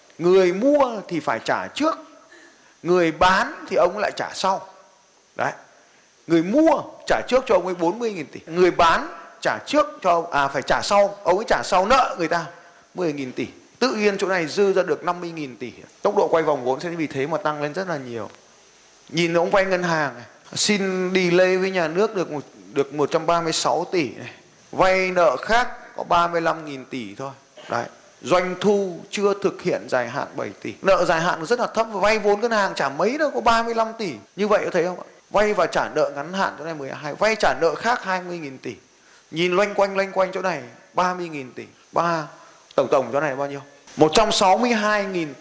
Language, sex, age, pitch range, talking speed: Vietnamese, male, 20-39, 155-200 Hz, 205 wpm